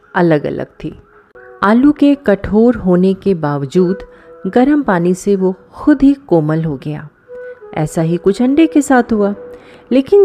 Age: 30-49